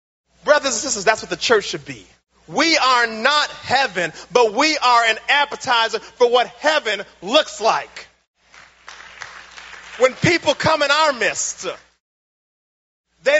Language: English